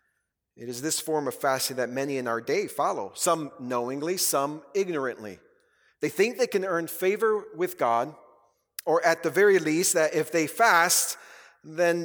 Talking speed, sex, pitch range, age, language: 170 wpm, male, 135-185 Hz, 40-59, English